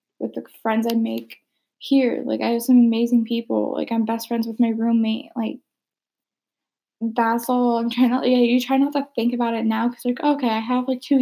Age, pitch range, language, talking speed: 10-29, 235-280 Hz, English, 220 wpm